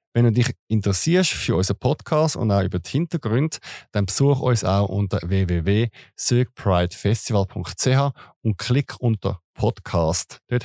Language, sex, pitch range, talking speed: German, male, 95-125 Hz, 130 wpm